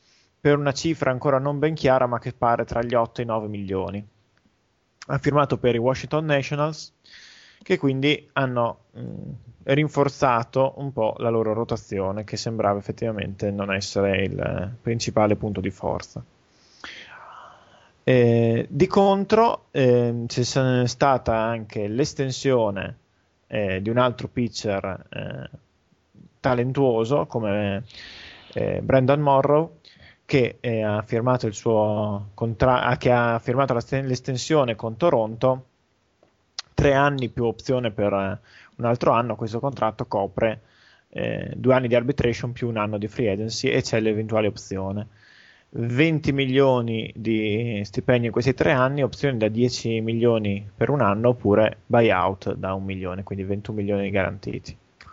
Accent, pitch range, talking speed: native, 105-135 Hz, 140 wpm